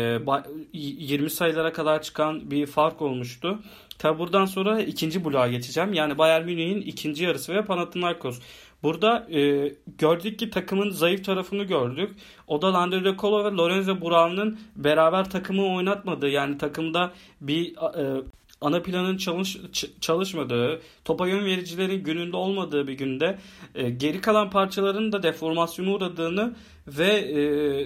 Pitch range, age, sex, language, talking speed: 145-190 Hz, 40-59, male, Turkish, 135 wpm